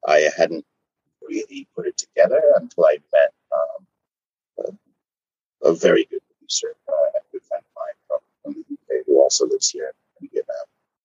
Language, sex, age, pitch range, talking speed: English, male, 30-49, 285-435 Hz, 170 wpm